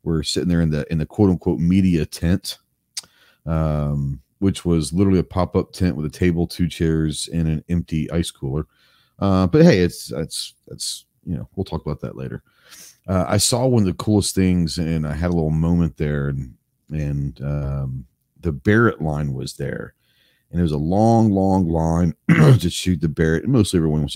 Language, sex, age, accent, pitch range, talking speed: English, male, 40-59, American, 75-90 Hz, 195 wpm